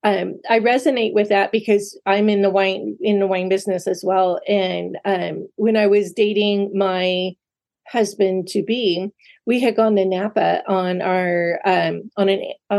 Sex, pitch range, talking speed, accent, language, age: female, 190-225 Hz, 170 wpm, American, English, 30-49